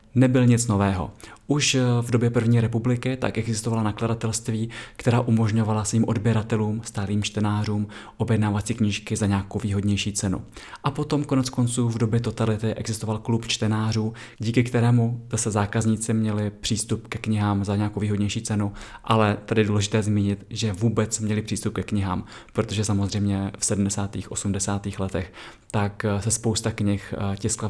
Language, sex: Czech, male